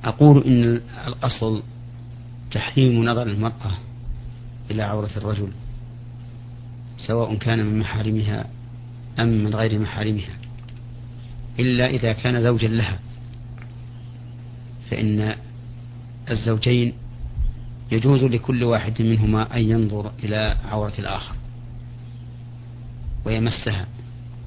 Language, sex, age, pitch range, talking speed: Arabic, male, 40-59, 110-120 Hz, 85 wpm